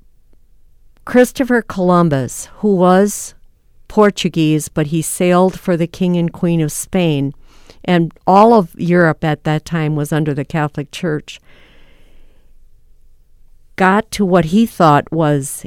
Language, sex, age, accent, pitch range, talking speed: English, female, 50-69, American, 150-185 Hz, 125 wpm